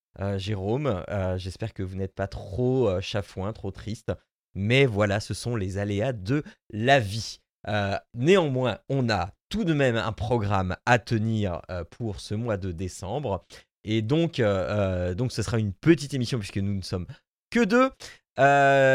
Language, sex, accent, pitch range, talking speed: French, male, French, 100-135 Hz, 175 wpm